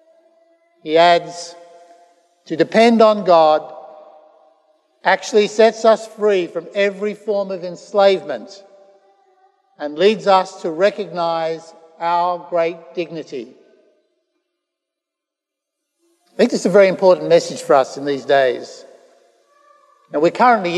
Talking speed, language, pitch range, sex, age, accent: 115 wpm, English, 175-225 Hz, male, 60-79, Australian